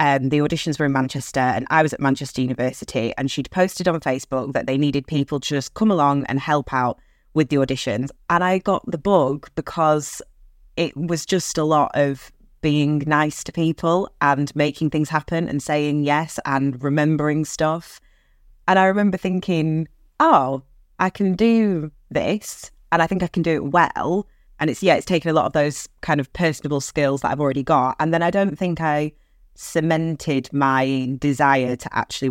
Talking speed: 190 wpm